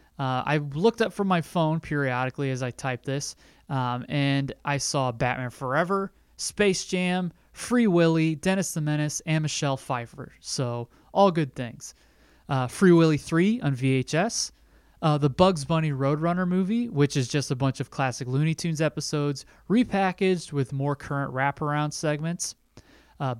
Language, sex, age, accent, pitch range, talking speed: English, male, 30-49, American, 135-175 Hz, 155 wpm